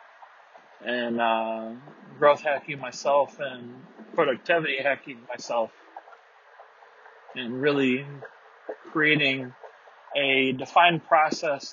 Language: English